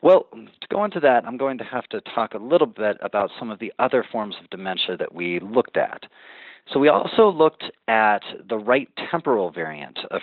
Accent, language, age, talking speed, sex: American, English, 40-59, 210 wpm, male